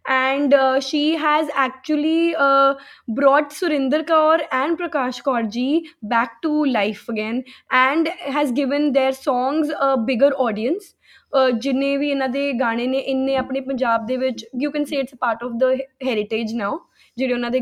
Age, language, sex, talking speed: 10-29, Punjabi, female, 165 wpm